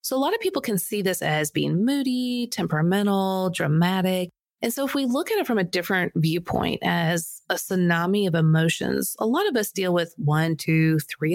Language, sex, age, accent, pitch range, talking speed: English, female, 30-49, American, 175-235 Hz, 200 wpm